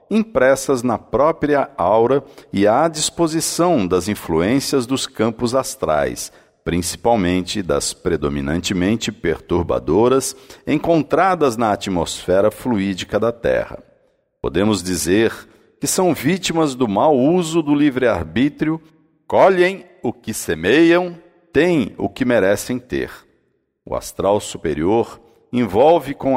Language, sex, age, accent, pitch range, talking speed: Portuguese, male, 60-79, Brazilian, 110-160 Hz, 105 wpm